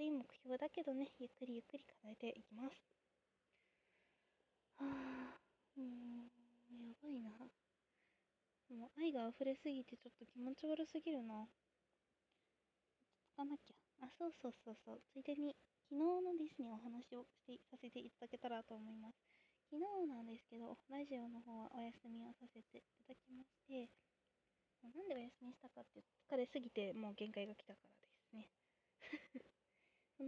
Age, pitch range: 20-39, 230-280 Hz